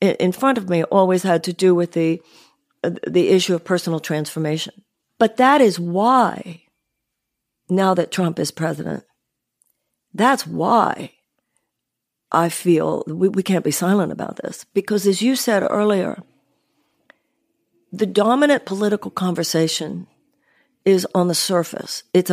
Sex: female